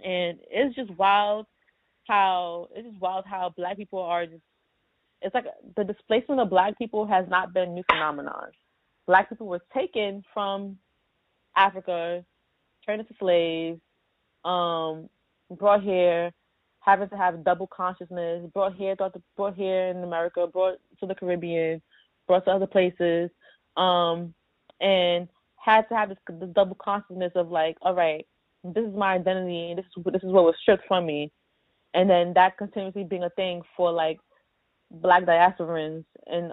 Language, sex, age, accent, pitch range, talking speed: English, female, 20-39, American, 170-200 Hz, 160 wpm